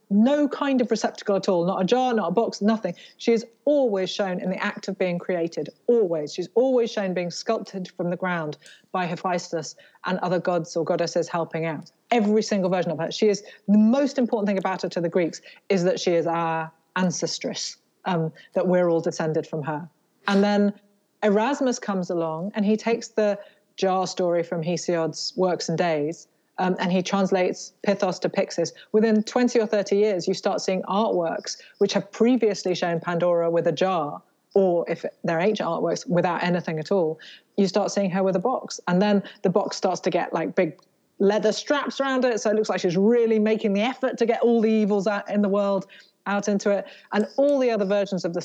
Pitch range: 175-215 Hz